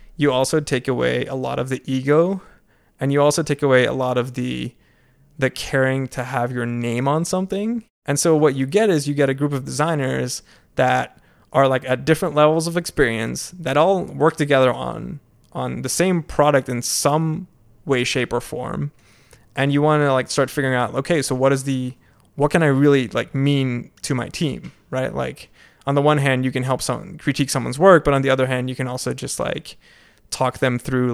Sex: male